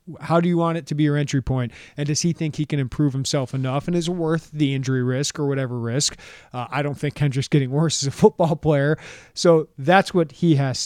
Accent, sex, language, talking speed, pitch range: American, male, English, 245 wpm, 130-160 Hz